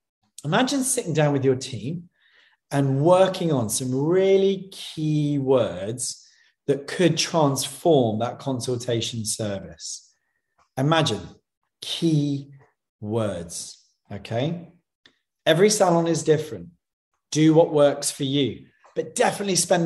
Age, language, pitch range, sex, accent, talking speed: 40-59, English, 130-165 Hz, male, British, 105 wpm